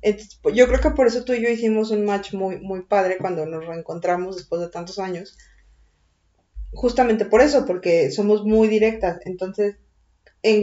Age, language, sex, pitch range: 20-39, Spanish, female, 190-235 Hz